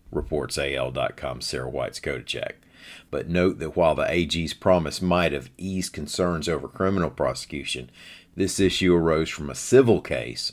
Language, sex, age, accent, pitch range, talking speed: English, male, 50-69, American, 75-95 Hz, 150 wpm